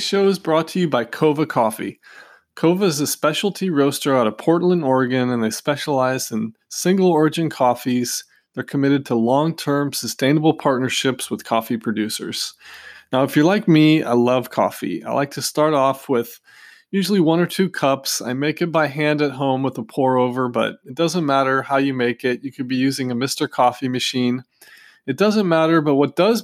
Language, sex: English, male